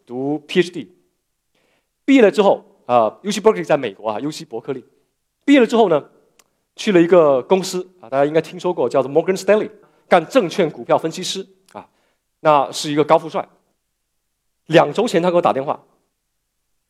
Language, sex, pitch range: Chinese, male, 155-220 Hz